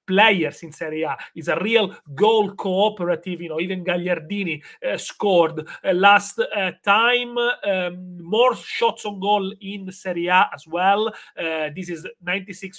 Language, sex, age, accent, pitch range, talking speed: English, male, 30-49, Italian, 165-195 Hz, 155 wpm